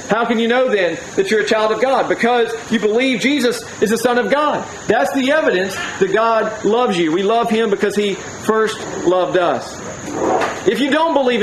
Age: 40-59